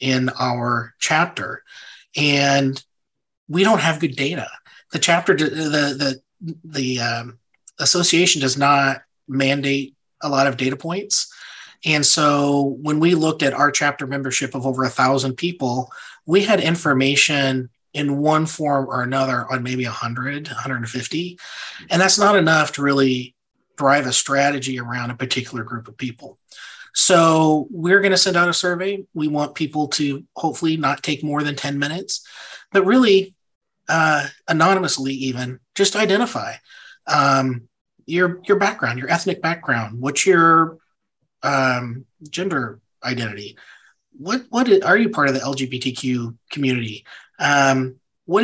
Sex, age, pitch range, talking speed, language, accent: male, 30-49, 130-170 Hz, 140 wpm, English, American